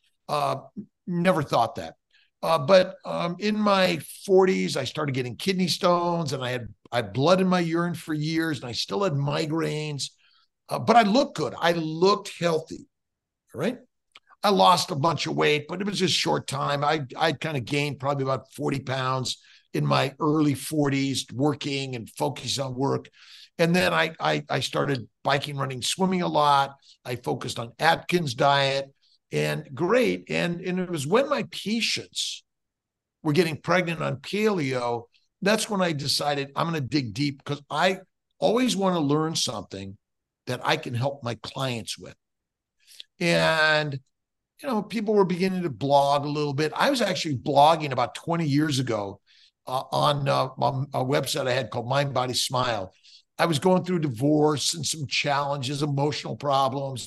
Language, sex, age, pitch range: English, male, 50-69, 135-175 Hz